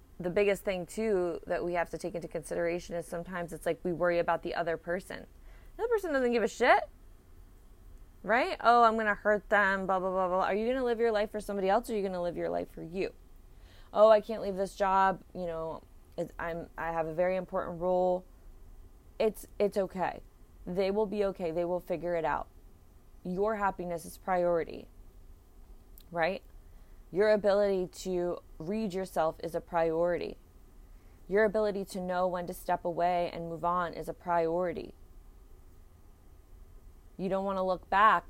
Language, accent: English, American